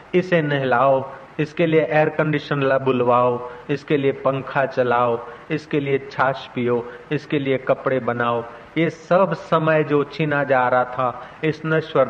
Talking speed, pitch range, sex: 145 wpm, 125-155 Hz, male